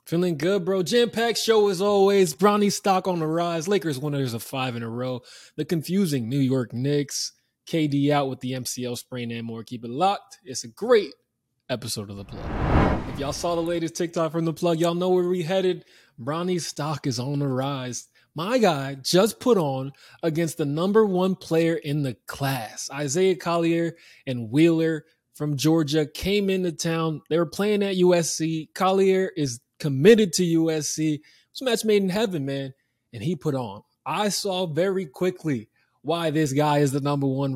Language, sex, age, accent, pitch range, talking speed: English, male, 20-39, American, 135-180 Hz, 185 wpm